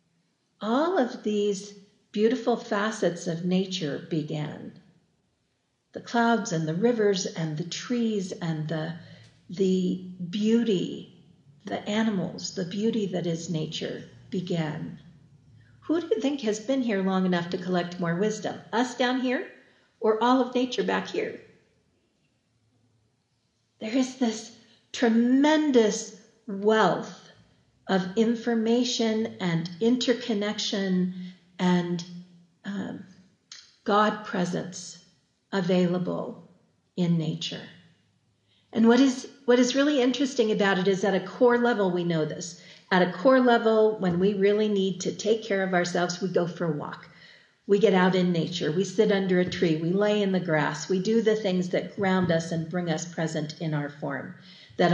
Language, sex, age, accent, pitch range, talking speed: English, female, 50-69, American, 170-220 Hz, 140 wpm